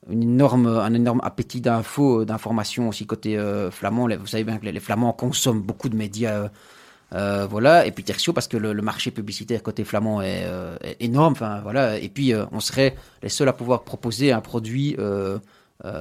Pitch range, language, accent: 115-140 Hz, French, French